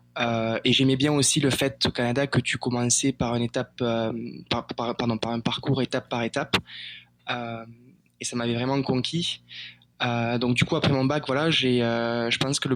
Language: French